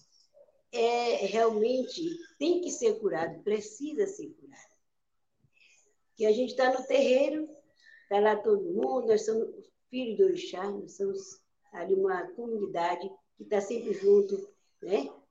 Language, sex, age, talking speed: Portuguese, female, 50-69, 135 wpm